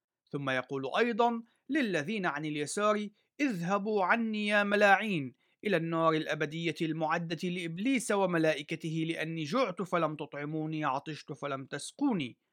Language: Arabic